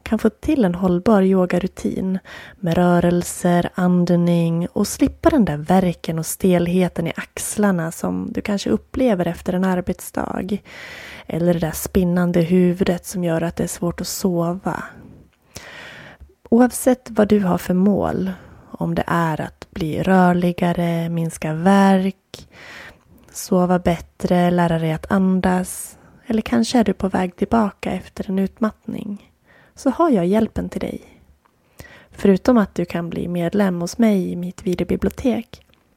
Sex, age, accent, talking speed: female, 20-39, native, 140 wpm